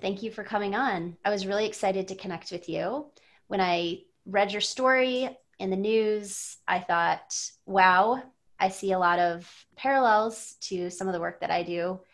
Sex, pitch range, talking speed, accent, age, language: female, 180-220 Hz, 190 wpm, American, 30-49, English